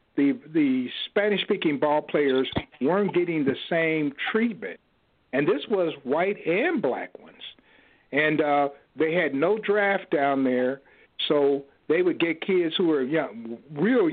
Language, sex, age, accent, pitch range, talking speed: English, male, 50-69, American, 140-180 Hz, 150 wpm